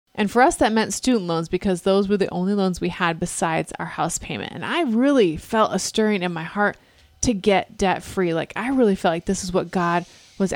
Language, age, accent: English, 30-49, American